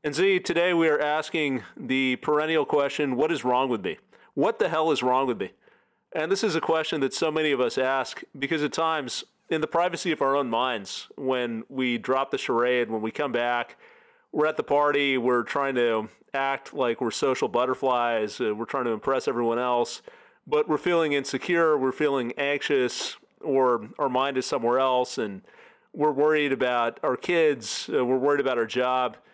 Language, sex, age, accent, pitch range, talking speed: English, male, 40-59, American, 130-155 Hz, 195 wpm